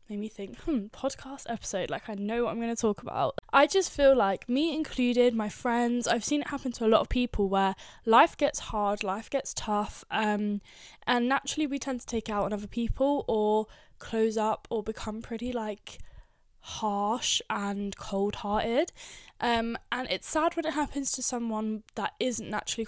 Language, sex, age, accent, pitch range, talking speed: English, female, 10-29, British, 210-245 Hz, 185 wpm